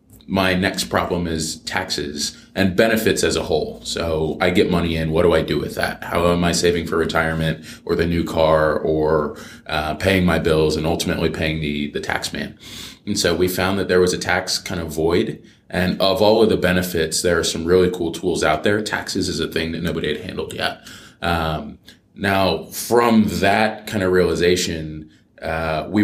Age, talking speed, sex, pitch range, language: 20-39, 200 wpm, male, 80-90 Hz, English